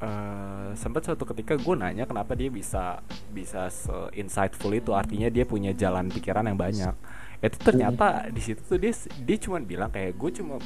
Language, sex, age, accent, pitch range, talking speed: Indonesian, male, 20-39, native, 100-120 Hz, 175 wpm